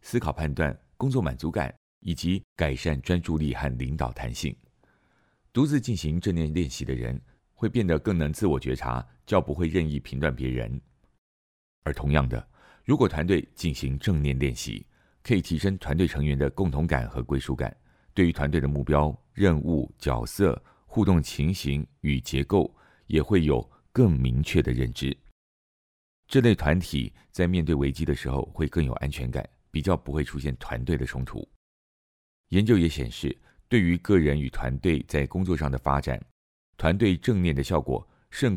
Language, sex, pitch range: Chinese, male, 65-90 Hz